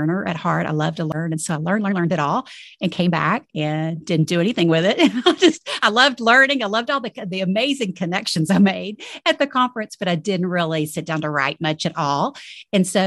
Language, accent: English, American